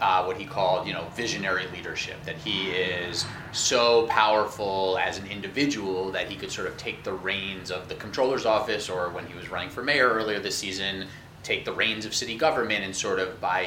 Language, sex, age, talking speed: English, male, 30-49, 210 wpm